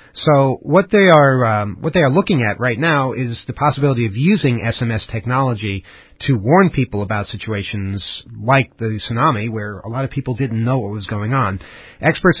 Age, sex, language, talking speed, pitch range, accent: 40-59, male, English, 190 wpm, 110-150 Hz, American